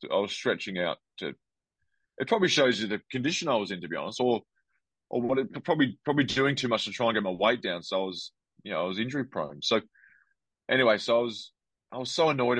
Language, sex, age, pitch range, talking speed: English, male, 30-49, 95-125 Hz, 245 wpm